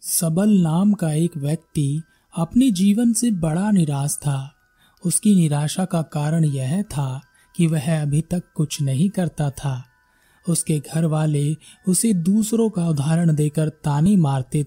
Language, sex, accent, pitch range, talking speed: Hindi, male, native, 145-185 Hz, 145 wpm